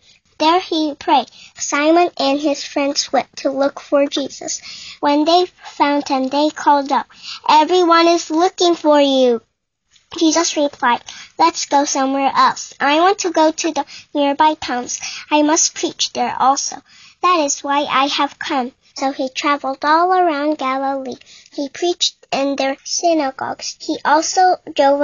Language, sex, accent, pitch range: Korean, male, American, 270-320 Hz